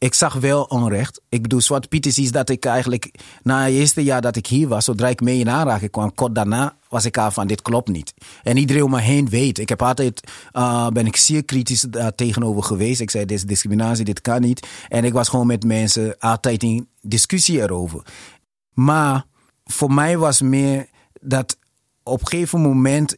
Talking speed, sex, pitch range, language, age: 205 wpm, male, 115-140 Hz, Dutch, 30-49